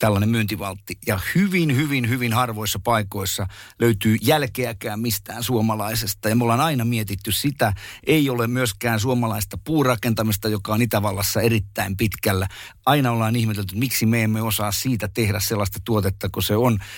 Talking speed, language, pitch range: 150 wpm, Finnish, 105-125 Hz